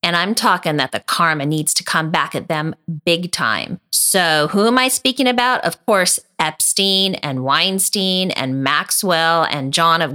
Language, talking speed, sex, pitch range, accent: English, 175 wpm, female, 170-250 Hz, American